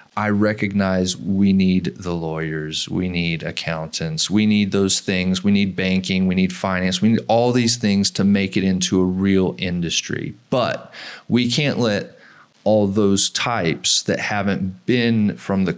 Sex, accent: male, American